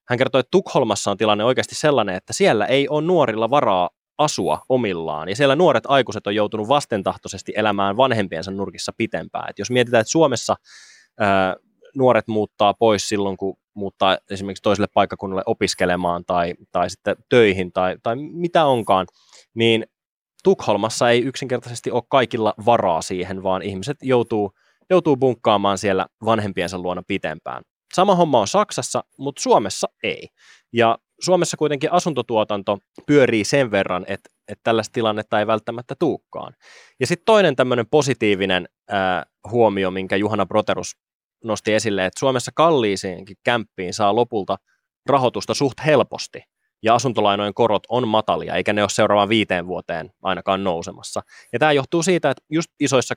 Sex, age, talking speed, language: male, 20-39, 140 wpm, Finnish